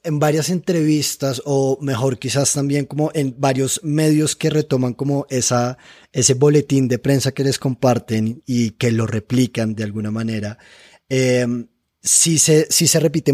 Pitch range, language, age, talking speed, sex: 125-145 Hz, Spanish, 20-39, 155 wpm, male